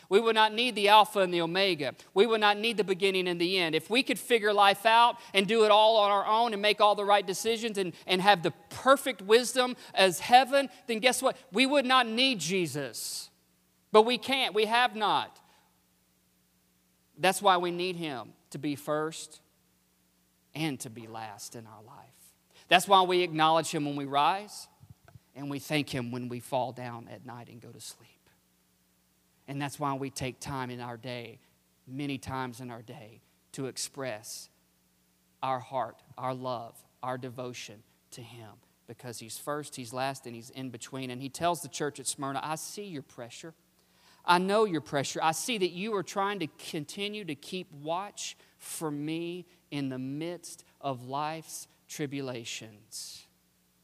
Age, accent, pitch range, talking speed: 40-59, American, 120-185 Hz, 180 wpm